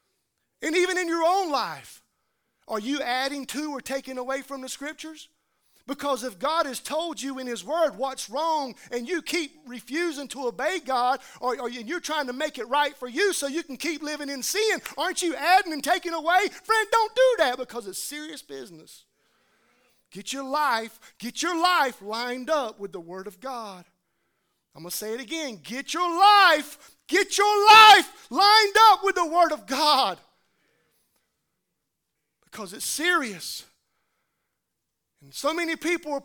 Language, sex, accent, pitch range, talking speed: English, male, American, 225-330 Hz, 170 wpm